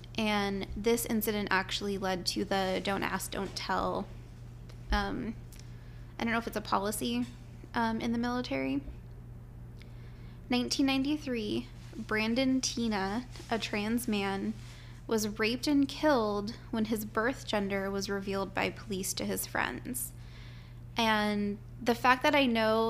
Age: 20-39